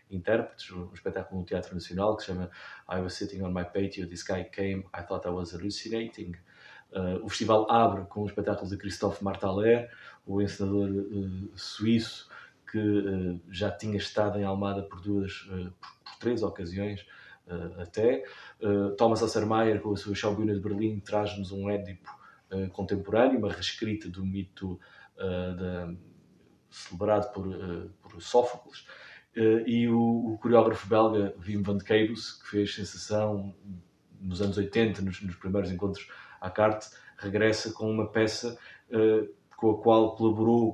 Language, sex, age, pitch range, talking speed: Portuguese, male, 20-39, 95-110 Hz, 160 wpm